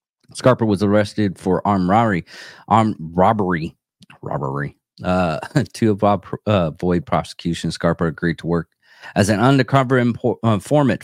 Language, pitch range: English, 90-115 Hz